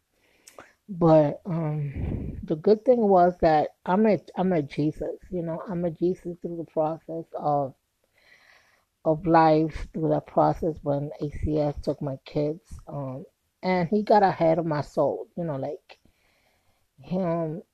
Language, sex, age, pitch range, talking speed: English, female, 20-39, 155-185 Hz, 145 wpm